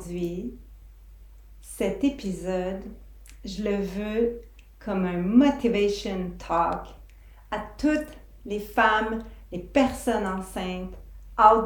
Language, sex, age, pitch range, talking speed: French, female, 40-59, 175-220 Hz, 95 wpm